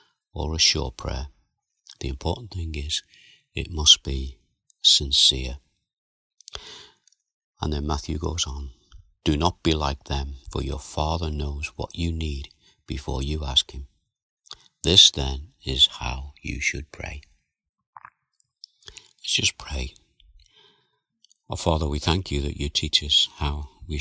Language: English